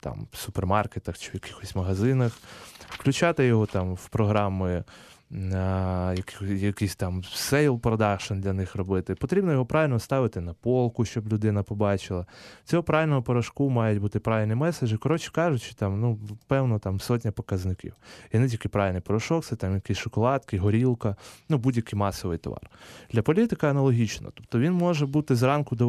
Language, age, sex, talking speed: Ukrainian, 20-39, male, 150 wpm